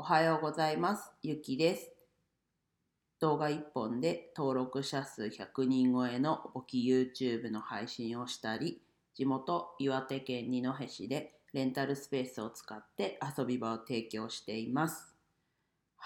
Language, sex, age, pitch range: Japanese, female, 40-59, 125-155 Hz